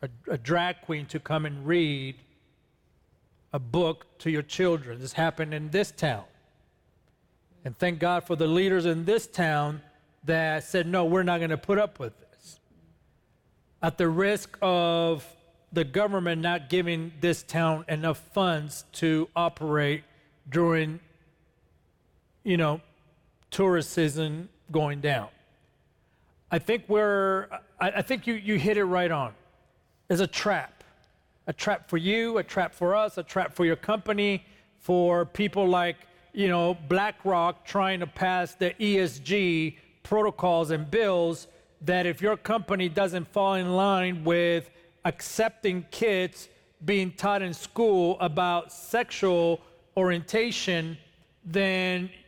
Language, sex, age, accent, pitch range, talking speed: English, male, 40-59, American, 160-190 Hz, 135 wpm